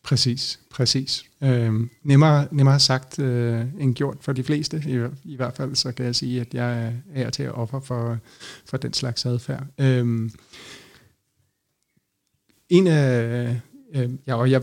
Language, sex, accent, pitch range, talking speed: Danish, male, native, 125-145 Hz, 120 wpm